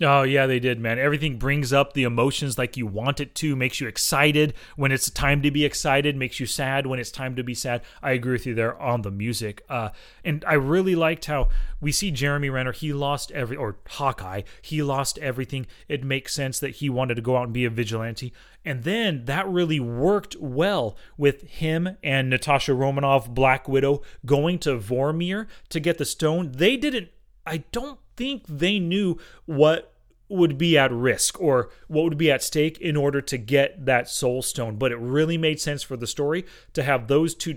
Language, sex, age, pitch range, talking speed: English, male, 30-49, 130-160 Hz, 205 wpm